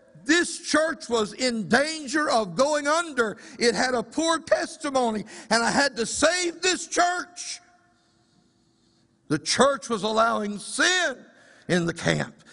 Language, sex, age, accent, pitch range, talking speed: English, male, 60-79, American, 185-265 Hz, 135 wpm